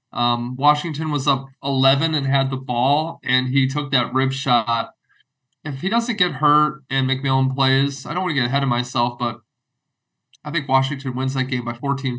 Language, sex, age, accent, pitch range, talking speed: English, male, 20-39, American, 130-145 Hz, 195 wpm